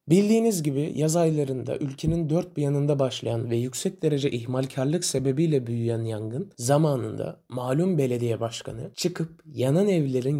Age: 30-49